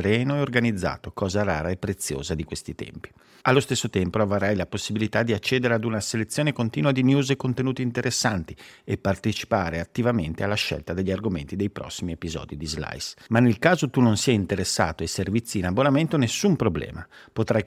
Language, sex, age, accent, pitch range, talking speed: Italian, male, 50-69, native, 95-125 Hz, 180 wpm